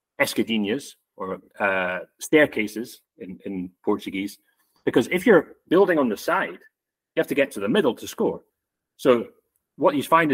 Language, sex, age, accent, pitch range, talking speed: English, male, 30-49, British, 110-140 Hz, 155 wpm